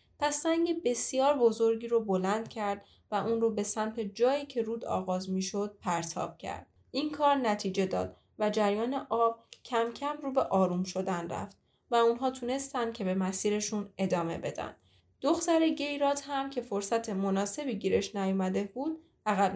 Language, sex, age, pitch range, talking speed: Persian, female, 10-29, 205-275 Hz, 155 wpm